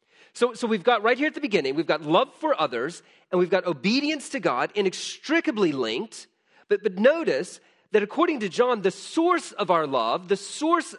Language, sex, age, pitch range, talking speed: English, male, 40-59, 155-225 Hz, 195 wpm